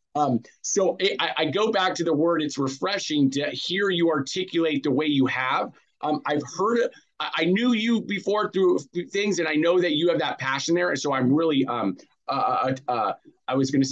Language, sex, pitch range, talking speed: English, male, 140-190 Hz, 205 wpm